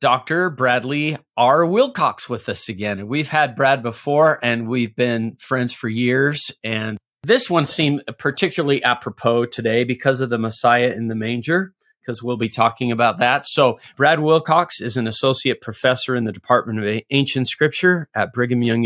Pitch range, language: 115-140 Hz, English